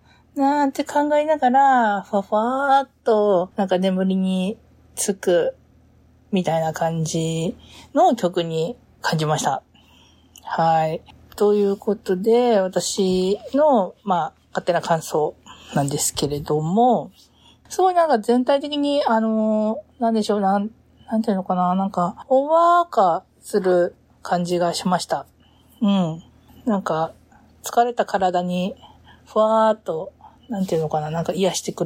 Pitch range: 180-240 Hz